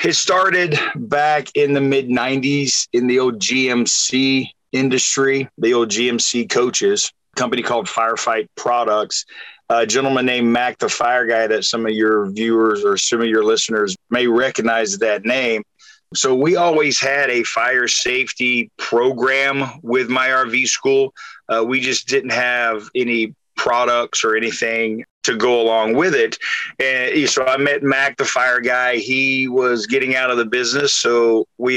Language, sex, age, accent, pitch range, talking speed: English, male, 40-59, American, 120-135 Hz, 160 wpm